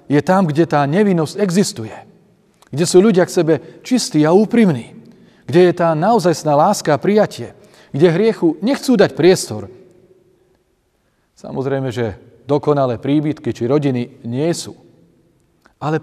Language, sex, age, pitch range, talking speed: Slovak, male, 40-59, 125-170 Hz, 130 wpm